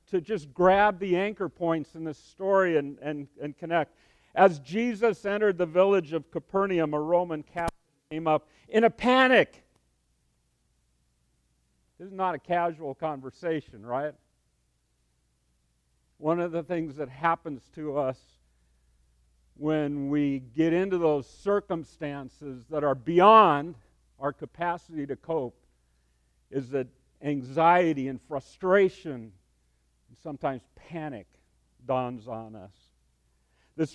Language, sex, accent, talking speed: English, male, American, 120 wpm